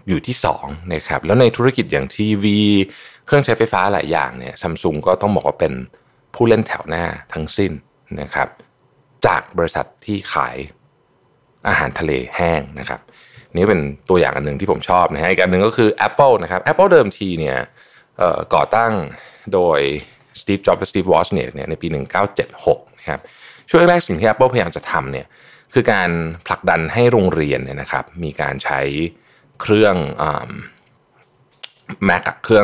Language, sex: Thai, male